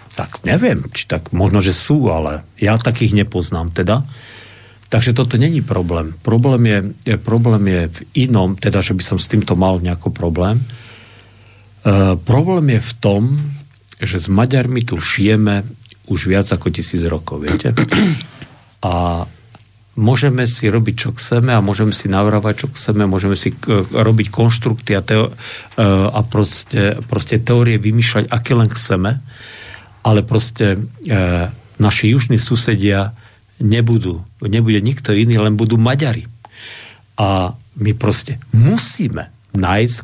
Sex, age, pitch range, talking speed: male, 50-69, 100-120 Hz, 140 wpm